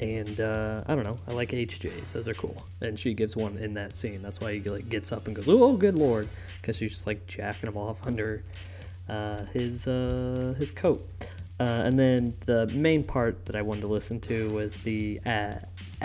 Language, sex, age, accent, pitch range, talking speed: English, male, 20-39, American, 100-120 Hz, 215 wpm